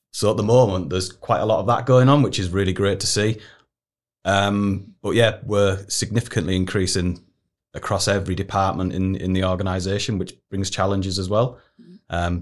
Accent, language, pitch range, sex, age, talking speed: British, English, 90-105 Hz, male, 30-49, 180 wpm